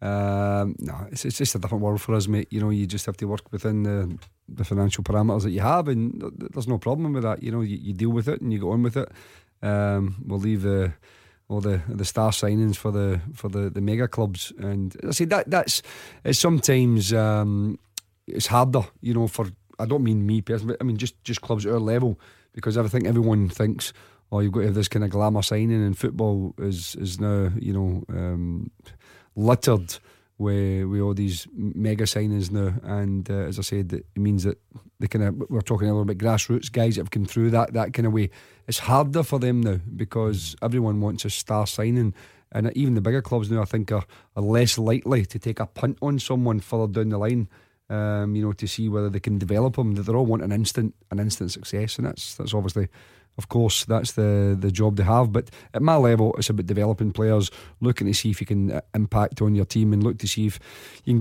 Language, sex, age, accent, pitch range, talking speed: English, male, 30-49, British, 100-115 Hz, 230 wpm